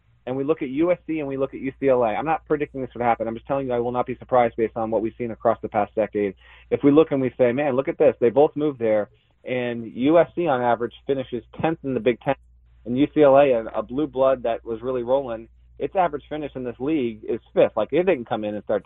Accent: American